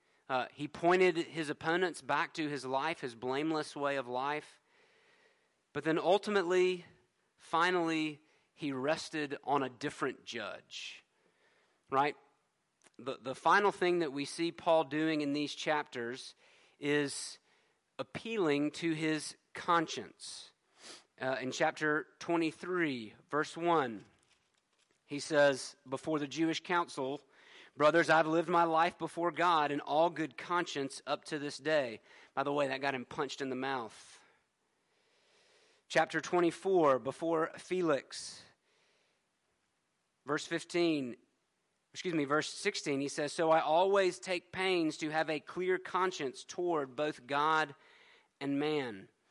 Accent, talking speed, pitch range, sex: American, 130 wpm, 145-175 Hz, male